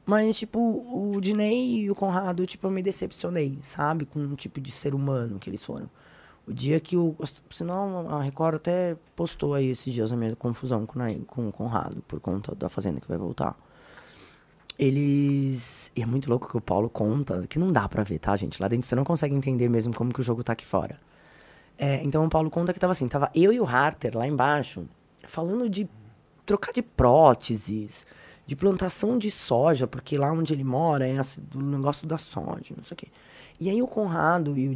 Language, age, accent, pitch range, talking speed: Portuguese, 20-39, Brazilian, 130-205 Hz, 205 wpm